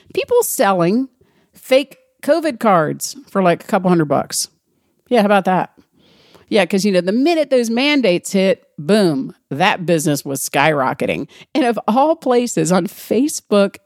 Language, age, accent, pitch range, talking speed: English, 50-69, American, 160-235 Hz, 150 wpm